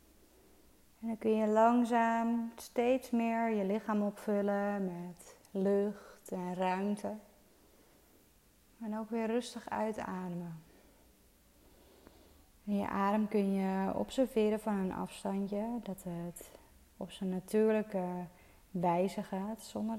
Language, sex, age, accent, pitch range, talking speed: Dutch, female, 20-39, Dutch, 185-215 Hz, 110 wpm